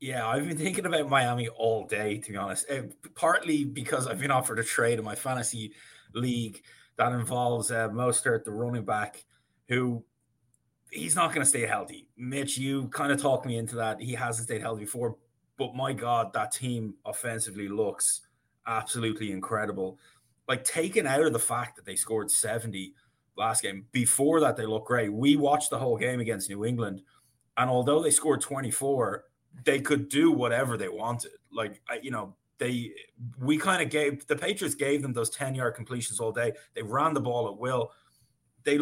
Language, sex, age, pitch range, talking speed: English, male, 20-39, 115-135 Hz, 185 wpm